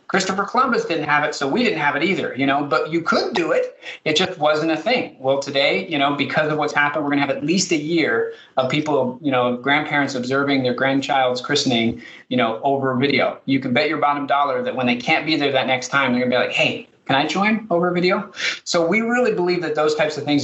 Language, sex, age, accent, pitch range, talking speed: English, male, 30-49, American, 125-155 Hz, 255 wpm